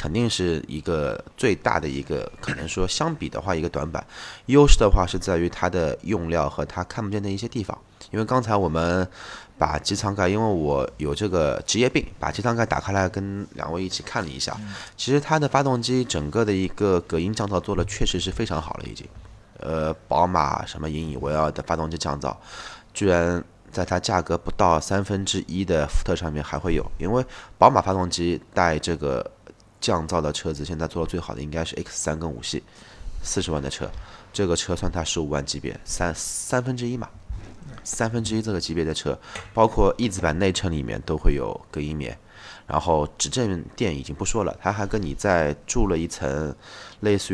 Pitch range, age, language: 80-105 Hz, 20-39, Chinese